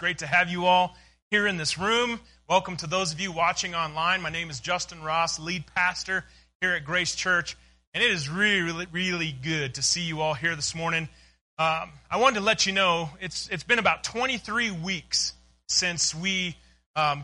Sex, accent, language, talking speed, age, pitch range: male, American, English, 195 wpm, 30-49, 155-200 Hz